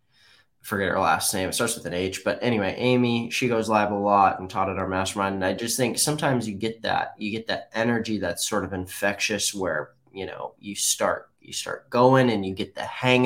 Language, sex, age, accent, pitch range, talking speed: English, male, 20-39, American, 105-130 Hz, 230 wpm